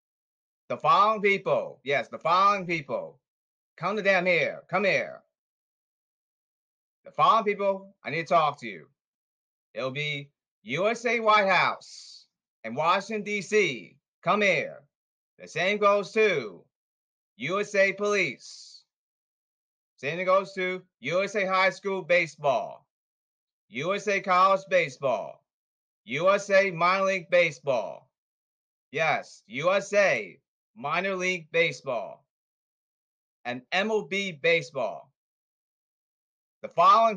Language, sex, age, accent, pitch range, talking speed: English, male, 30-49, American, 175-205 Hz, 100 wpm